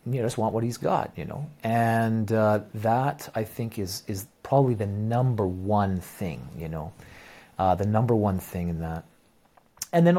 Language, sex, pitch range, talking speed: English, male, 105-145 Hz, 185 wpm